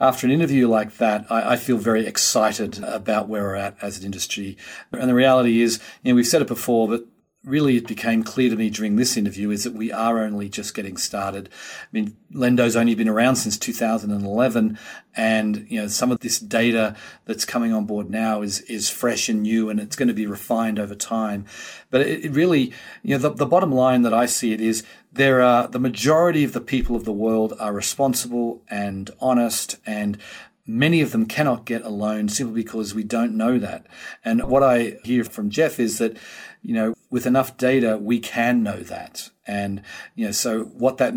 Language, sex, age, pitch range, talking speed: English, male, 40-59, 110-125 Hz, 220 wpm